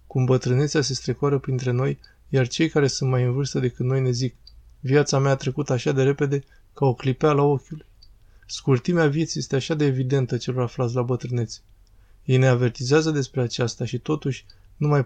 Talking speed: 185 wpm